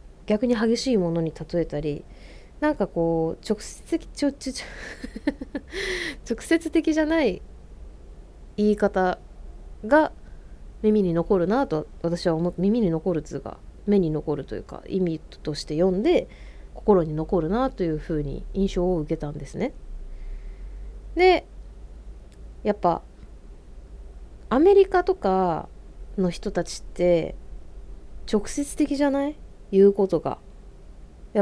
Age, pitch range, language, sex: 20-39, 160-245 Hz, Japanese, female